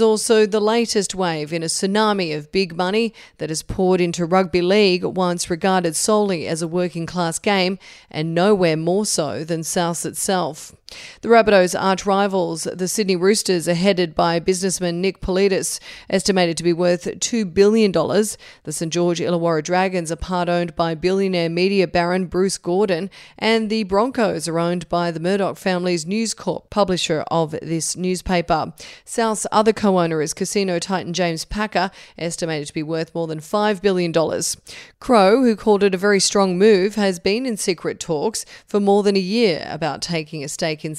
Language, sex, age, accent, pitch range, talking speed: English, female, 40-59, Australian, 165-205 Hz, 175 wpm